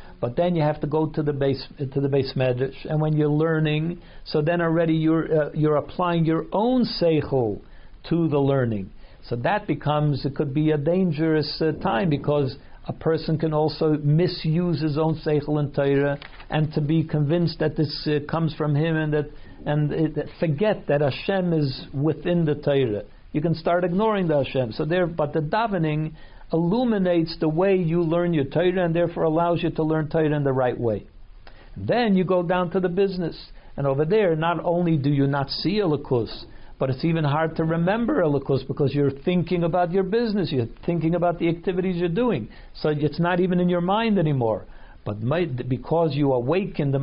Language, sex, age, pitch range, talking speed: English, male, 60-79, 145-175 Hz, 195 wpm